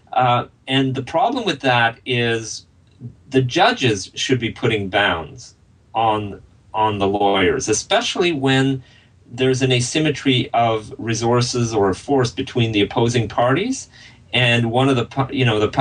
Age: 40-59